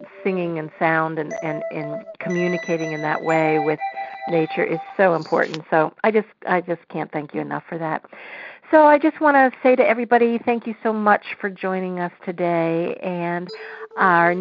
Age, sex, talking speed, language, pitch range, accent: 50-69, female, 185 wpm, English, 165-210 Hz, American